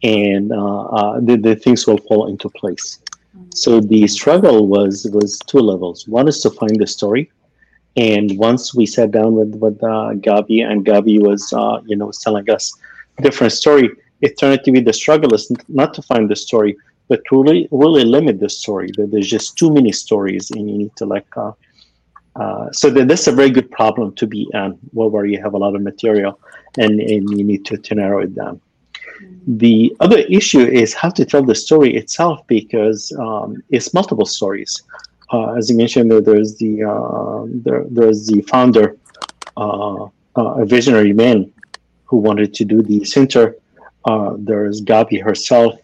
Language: English